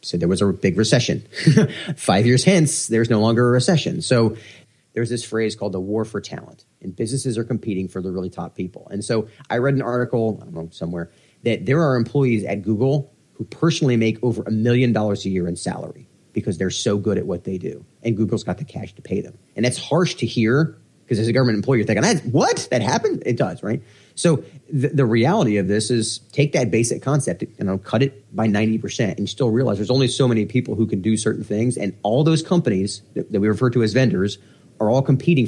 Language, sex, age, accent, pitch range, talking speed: English, male, 30-49, American, 105-130 Hz, 240 wpm